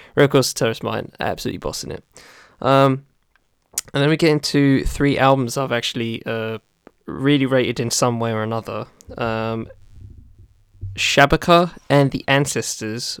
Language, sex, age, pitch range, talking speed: English, male, 10-29, 110-135 Hz, 135 wpm